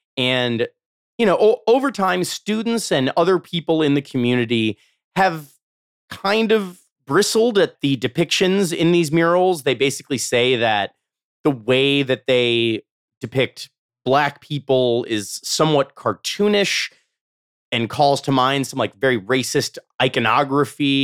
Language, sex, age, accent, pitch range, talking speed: English, male, 30-49, American, 115-160 Hz, 130 wpm